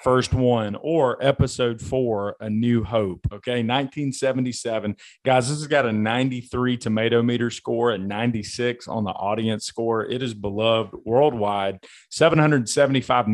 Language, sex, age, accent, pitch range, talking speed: English, male, 40-59, American, 110-130 Hz, 135 wpm